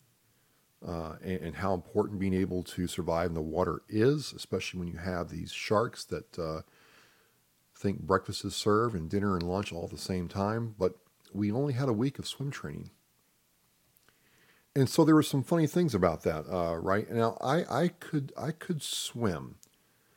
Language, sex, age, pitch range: English, male, 40-59, 85-115 Hz